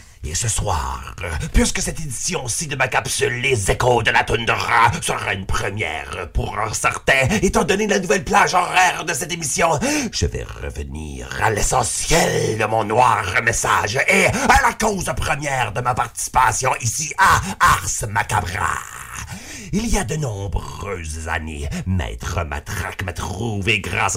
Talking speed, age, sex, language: 150 wpm, 50-69, male, French